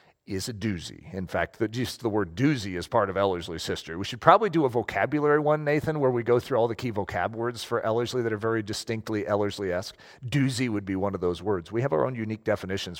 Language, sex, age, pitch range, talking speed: English, male, 40-59, 110-160 Hz, 240 wpm